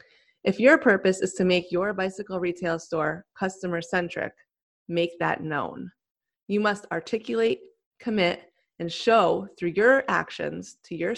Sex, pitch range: female, 170-215 Hz